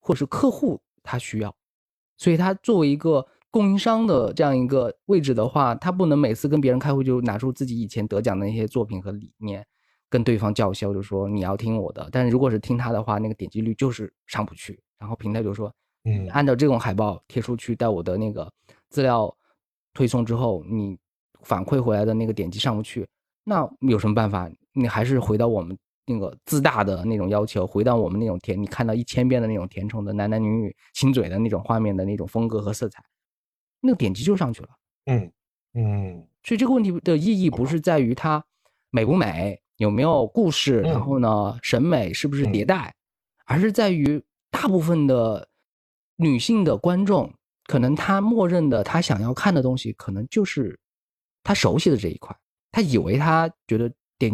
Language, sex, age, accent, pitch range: Chinese, male, 20-39, native, 105-145 Hz